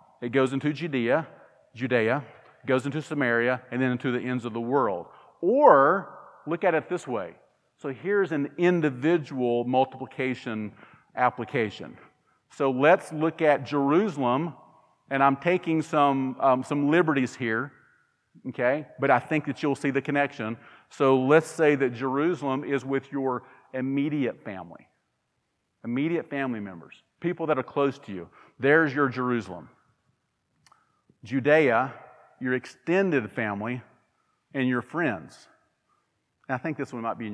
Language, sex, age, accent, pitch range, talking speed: English, male, 40-59, American, 120-145 Hz, 140 wpm